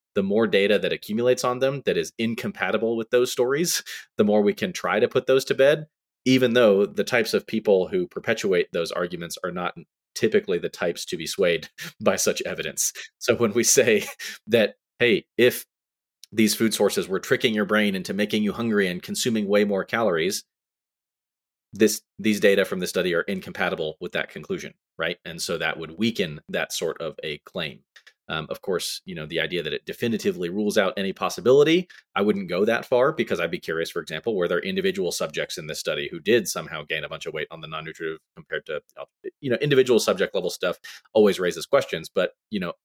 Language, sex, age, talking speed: English, male, 30-49, 205 wpm